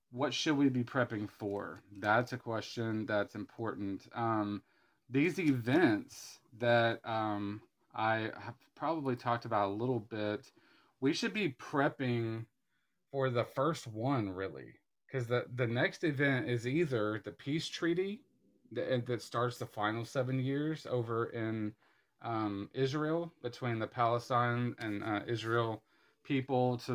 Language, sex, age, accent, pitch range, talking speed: English, male, 30-49, American, 110-130 Hz, 140 wpm